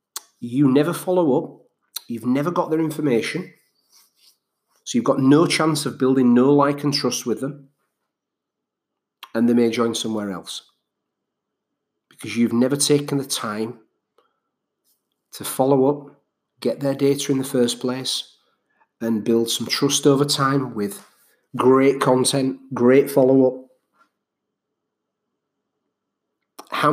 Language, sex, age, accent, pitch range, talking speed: English, male, 40-59, British, 115-140 Hz, 125 wpm